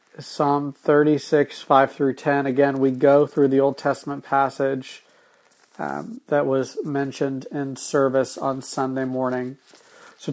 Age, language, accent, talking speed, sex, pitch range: 40-59, English, American, 135 wpm, male, 135-155 Hz